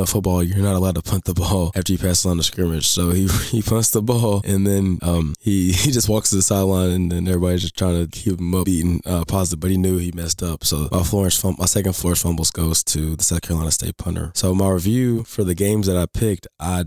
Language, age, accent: English, 20-39, American